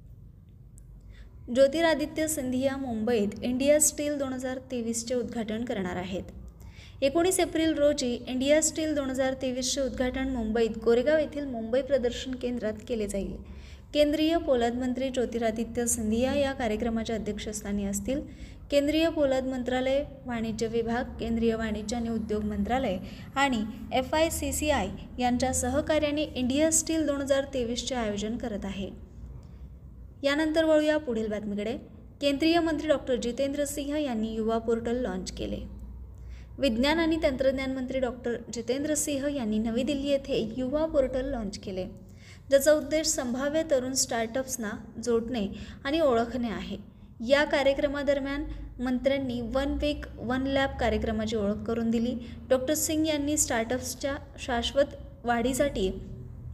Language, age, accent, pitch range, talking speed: Marathi, 20-39, native, 230-285 Hz, 120 wpm